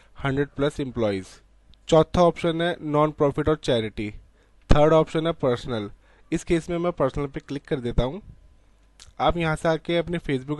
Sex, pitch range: male, 115-150 Hz